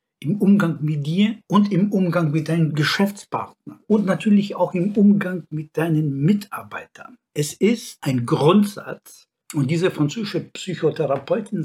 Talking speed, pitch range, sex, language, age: 135 wpm, 140-180 Hz, male, German, 60-79